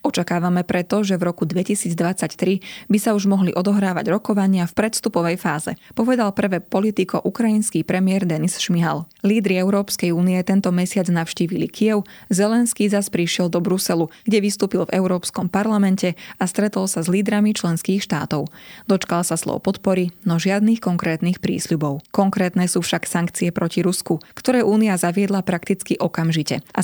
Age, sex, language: 20-39, female, Slovak